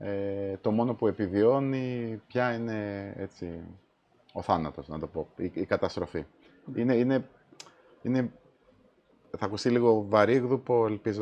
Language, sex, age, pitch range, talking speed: Greek, male, 30-49, 90-115 Hz, 130 wpm